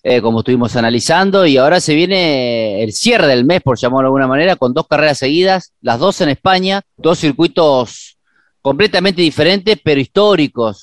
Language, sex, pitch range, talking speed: Spanish, male, 125-175 Hz, 170 wpm